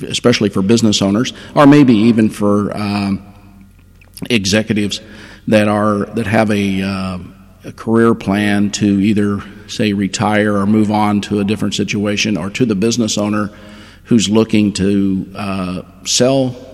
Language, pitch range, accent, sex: English, 100-110 Hz, American, male